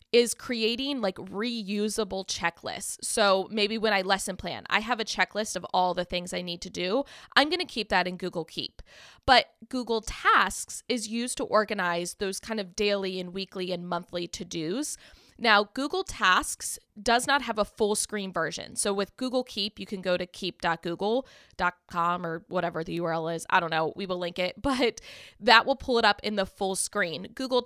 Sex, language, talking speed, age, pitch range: female, English, 195 wpm, 20-39, 175-220 Hz